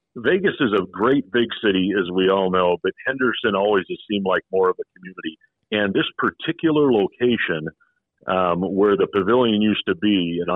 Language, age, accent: English, 50-69, American